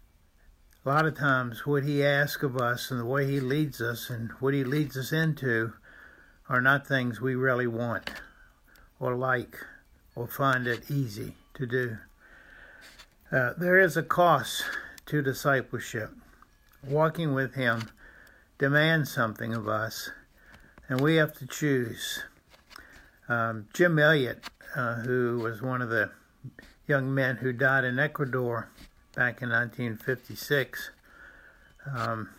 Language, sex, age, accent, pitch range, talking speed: English, male, 60-79, American, 115-145 Hz, 135 wpm